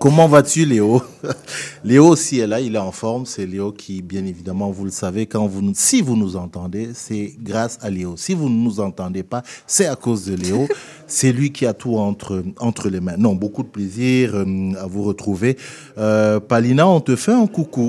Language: French